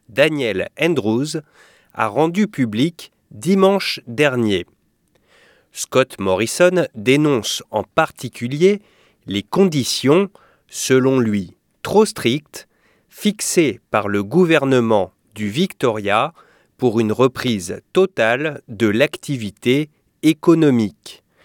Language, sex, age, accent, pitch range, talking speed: English, male, 30-49, French, 110-165 Hz, 85 wpm